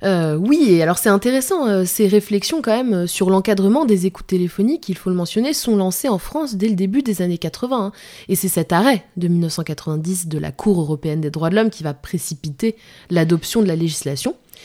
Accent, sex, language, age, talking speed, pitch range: French, female, French, 20-39, 215 wpm, 175-220 Hz